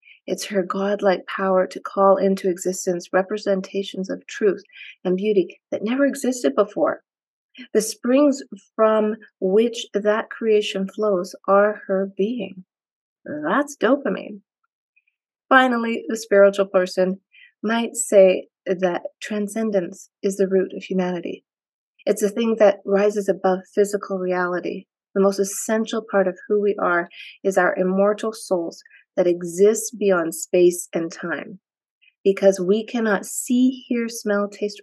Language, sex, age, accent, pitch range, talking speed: English, female, 30-49, American, 190-225 Hz, 130 wpm